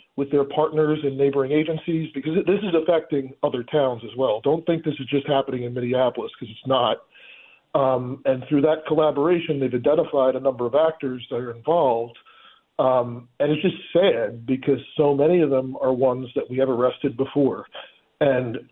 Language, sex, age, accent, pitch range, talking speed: English, male, 40-59, American, 135-160 Hz, 185 wpm